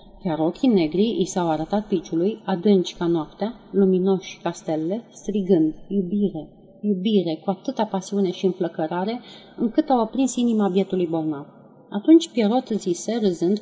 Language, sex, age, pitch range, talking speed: Romanian, female, 40-59, 170-210 Hz, 140 wpm